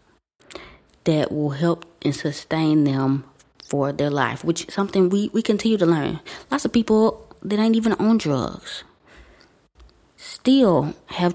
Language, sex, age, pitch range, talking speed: English, female, 20-39, 150-180 Hz, 145 wpm